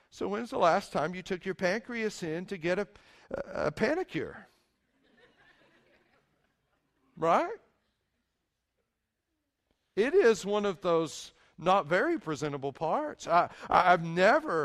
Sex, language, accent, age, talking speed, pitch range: male, English, American, 50-69, 120 wpm, 140-180 Hz